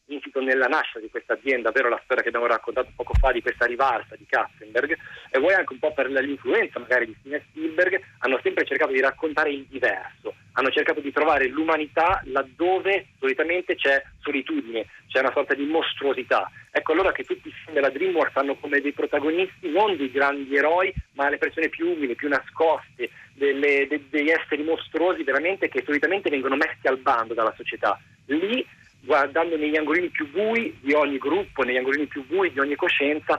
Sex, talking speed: male, 185 wpm